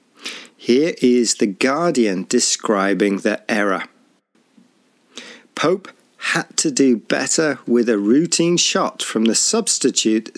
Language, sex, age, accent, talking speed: English, male, 40-59, British, 110 wpm